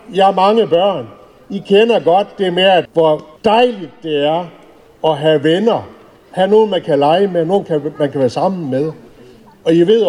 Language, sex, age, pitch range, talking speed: Danish, male, 60-79, 145-195 Hz, 190 wpm